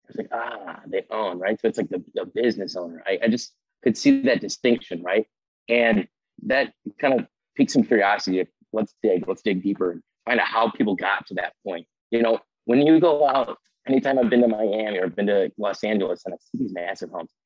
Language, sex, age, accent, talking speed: English, male, 30-49, American, 225 wpm